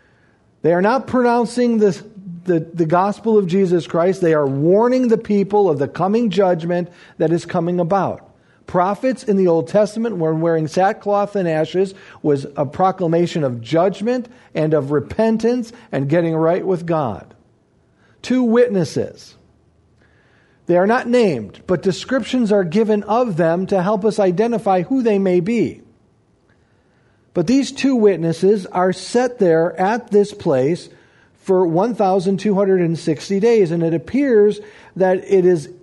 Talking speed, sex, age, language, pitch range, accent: 140 wpm, male, 50-69, English, 160-210 Hz, American